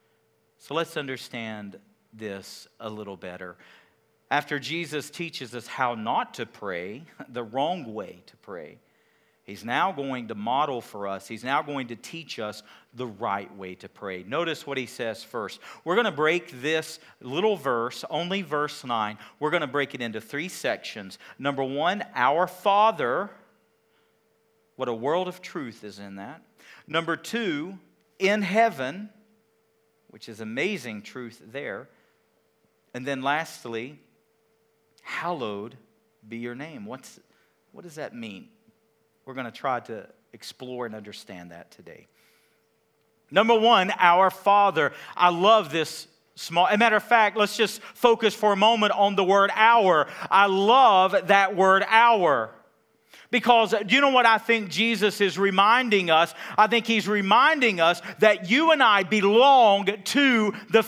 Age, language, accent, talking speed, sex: 50-69, English, American, 150 wpm, male